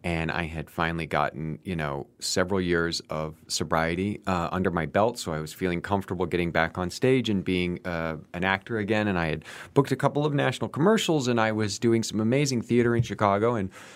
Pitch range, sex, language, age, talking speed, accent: 85-110 Hz, male, English, 30-49, 210 wpm, American